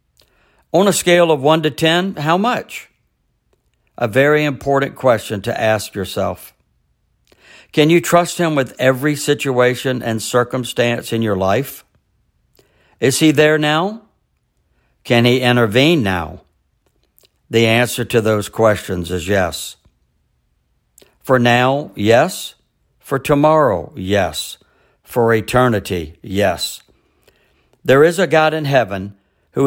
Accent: American